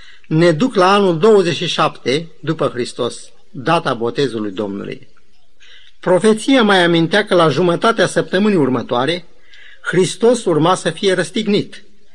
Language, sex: Romanian, male